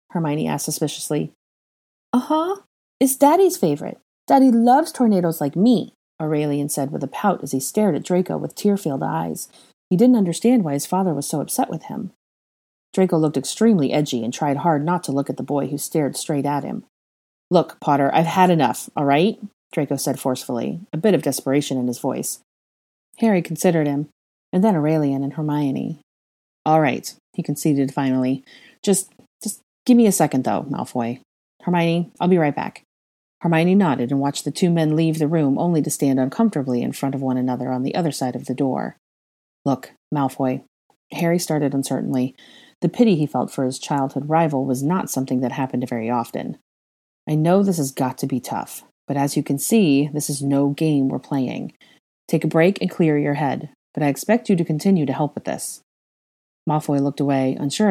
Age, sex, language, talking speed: 30-49, female, English, 190 wpm